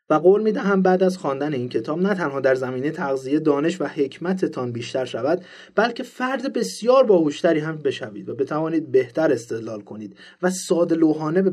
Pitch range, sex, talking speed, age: 130-185 Hz, male, 170 wpm, 30-49